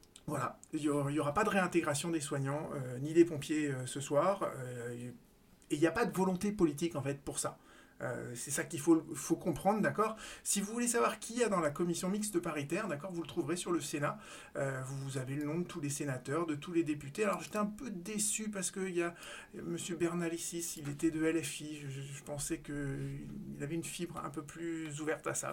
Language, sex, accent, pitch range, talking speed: French, male, French, 140-170 Hz, 235 wpm